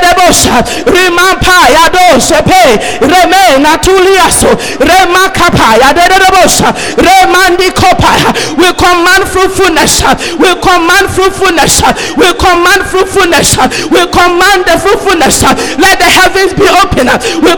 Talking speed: 105 wpm